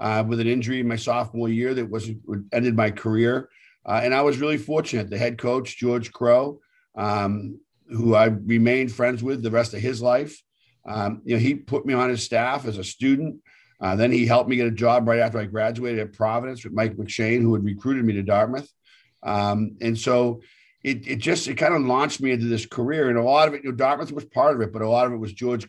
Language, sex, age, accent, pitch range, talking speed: English, male, 50-69, American, 110-125 Hz, 240 wpm